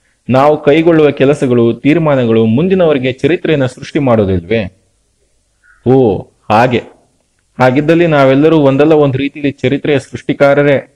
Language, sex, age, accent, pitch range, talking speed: Kannada, male, 30-49, native, 115-150 Hz, 95 wpm